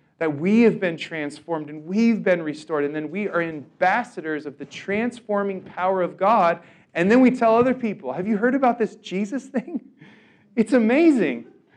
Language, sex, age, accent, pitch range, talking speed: English, male, 40-59, American, 165-230 Hz, 180 wpm